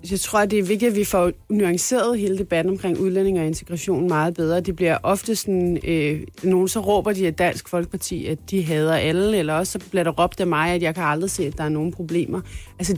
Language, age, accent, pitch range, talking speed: Danish, 30-49, native, 175-210 Hz, 235 wpm